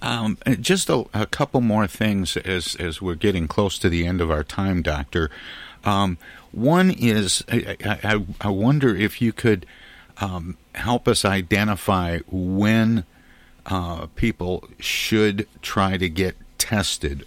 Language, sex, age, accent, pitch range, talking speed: English, male, 50-69, American, 85-105 Hz, 140 wpm